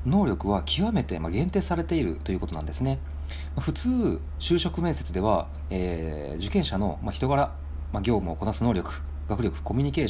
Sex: male